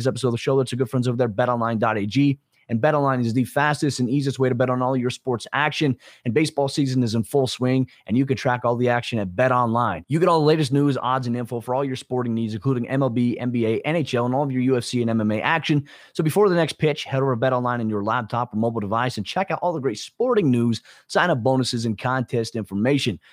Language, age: English, 30-49